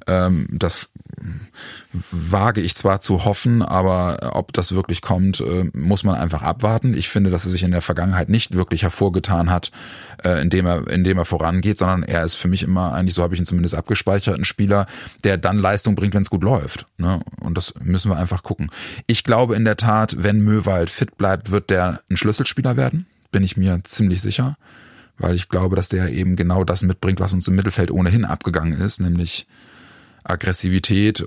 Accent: German